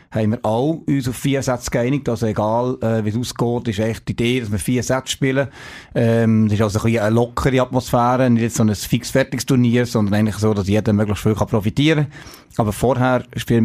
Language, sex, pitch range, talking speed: German, male, 110-125 Hz, 220 wpm